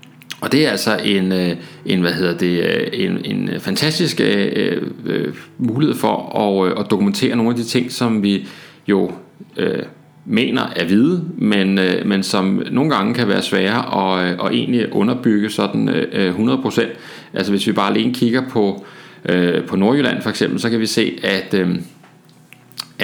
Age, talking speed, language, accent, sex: 30-49, 170 wpm, Danish, native, male